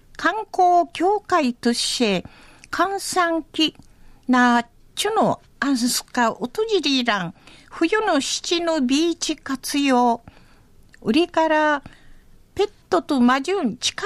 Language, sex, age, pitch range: Japanese, female, 50-69, 250-345 Hz